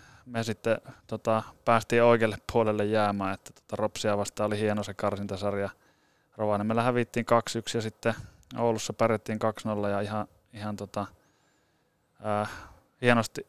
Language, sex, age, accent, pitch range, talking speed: Finnish, male, 20-39, native, 105-120 Hz, 135 wpm